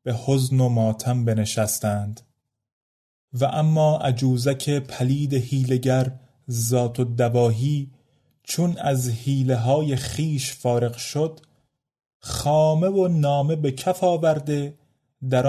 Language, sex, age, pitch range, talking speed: Persian, male, 30-49, 125-155 Hz, 105 wpm